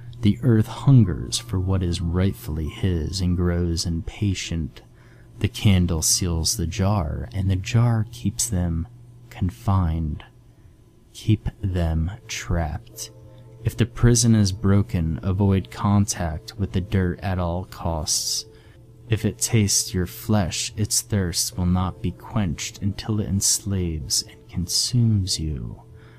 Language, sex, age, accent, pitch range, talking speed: English, male, 20-39, American, 90-115 Hz, 125 wpm